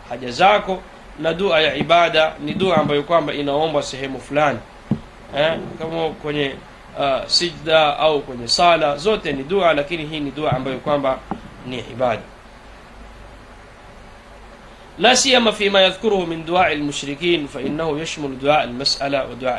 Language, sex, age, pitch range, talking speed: Swahili, male, 30-49, 145-185 Hz, 130 wpm